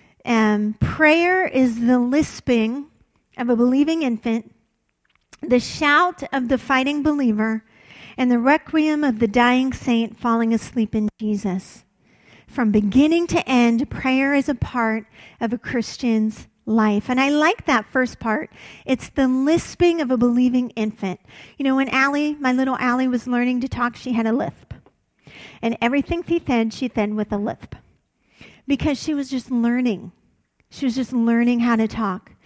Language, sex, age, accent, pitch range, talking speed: English, female, 40-59, American, 235-300 Hz, 160 wpm